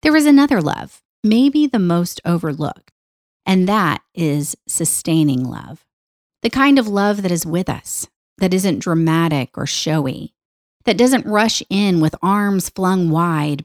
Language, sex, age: English, female, 40-59